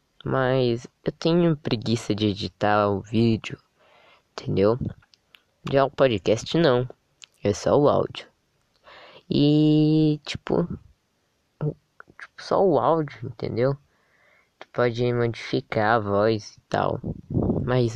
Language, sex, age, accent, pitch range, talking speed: Portuguese, female, 10-29, Brazilian, 105-135 Hz, 105 wpm